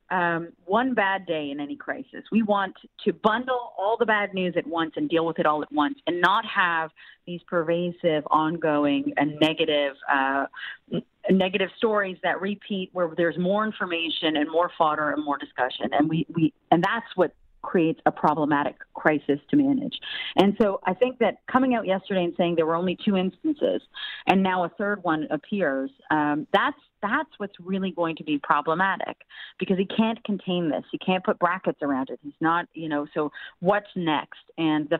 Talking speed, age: 190 wpm, 40-59